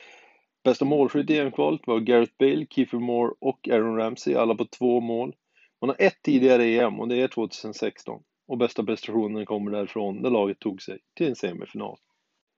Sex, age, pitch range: male, 30-49, 115-130 Hz